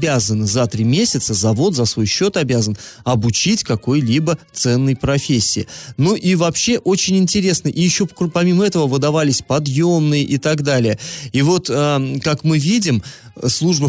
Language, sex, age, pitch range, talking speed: Russian, male, 30-49, 120-160 Hz, 140 wpm